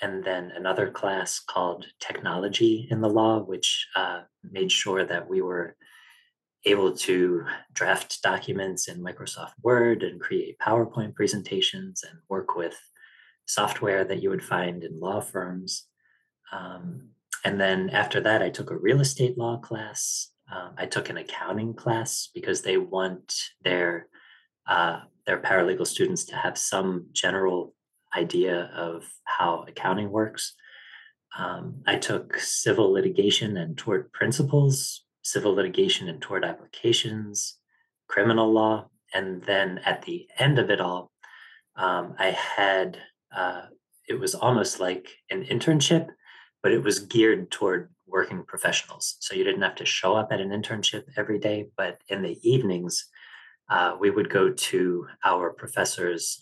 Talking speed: 145 wpm